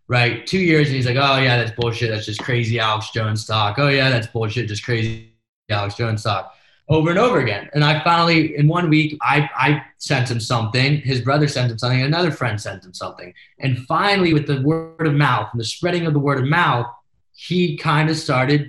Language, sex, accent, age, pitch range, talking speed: English, male, American, 20-39, 120-155 Hz, 220 wpm